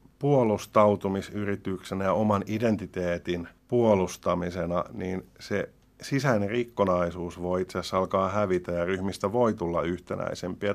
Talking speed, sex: 105 wpm, male